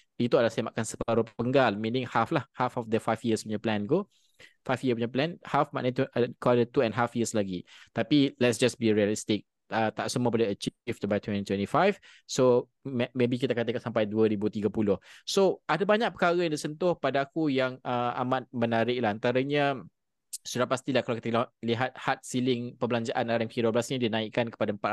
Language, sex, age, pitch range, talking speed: Malay, male, 20-39, 115-135 Hz, 175 wpm